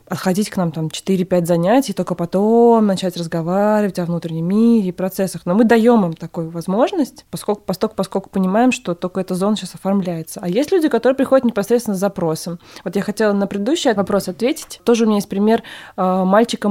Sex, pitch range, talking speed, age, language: female, 190-230 Hz, 185 wpm, 20-39, Russian